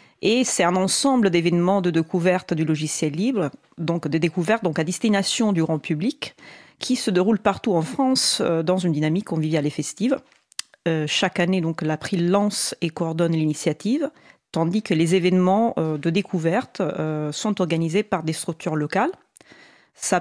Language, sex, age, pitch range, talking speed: French, female, 40-59, 165-210 Hz, 170 wpm